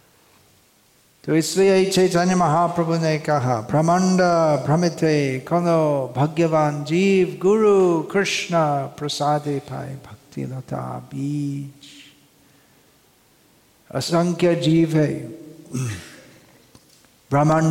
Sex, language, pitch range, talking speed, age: male, Hindi, 145-190 Hz, 60 wpm, 50-69